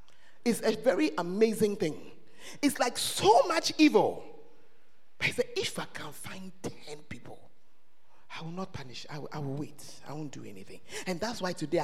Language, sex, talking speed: English, male, 175 wpm